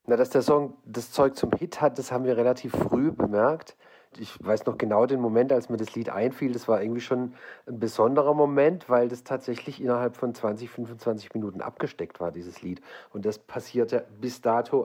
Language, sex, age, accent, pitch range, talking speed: German, male, 40-59, German, 105-125 Hz, 200 wpm